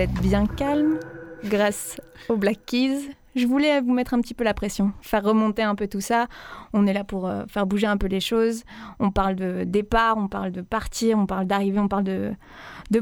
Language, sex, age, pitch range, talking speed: French, female, 20-39, 195-235 Hz, 210 wpm